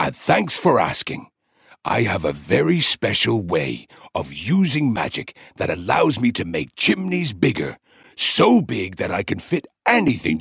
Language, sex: English, male